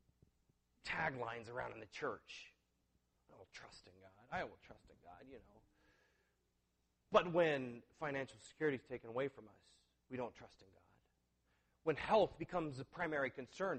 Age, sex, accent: 40-59, male, American